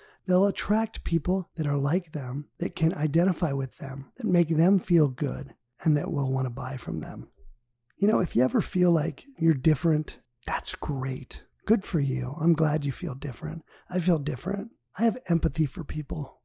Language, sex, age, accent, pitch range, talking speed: English, male, 40-59, American, 135-170 Hz, 190 wpm